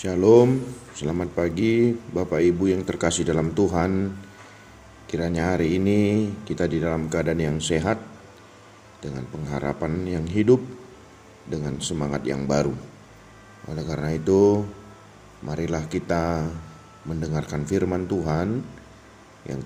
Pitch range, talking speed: 80-105 Hz, 105 wpm